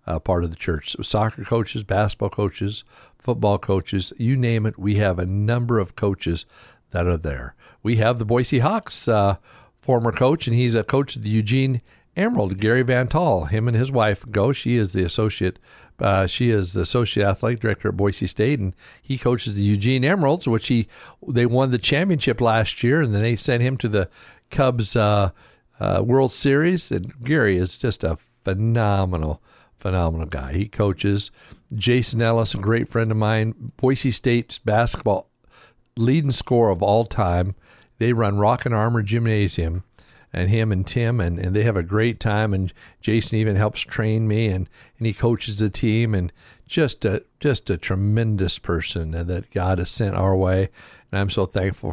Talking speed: 185 wpm